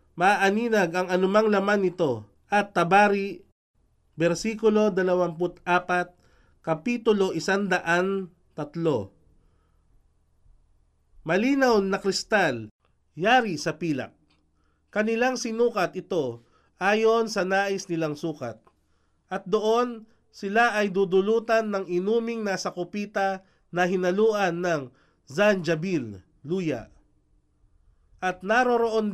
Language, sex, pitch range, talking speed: Filipino, male, 150-210 Hz, 85 wpm